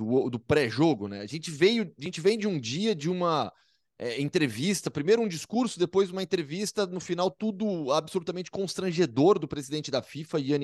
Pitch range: 125-190 Hz